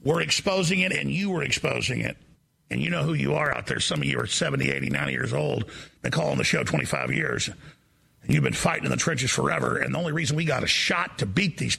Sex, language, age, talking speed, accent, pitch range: male, English, 50-69, 255 wpm, American, 165-215 Hz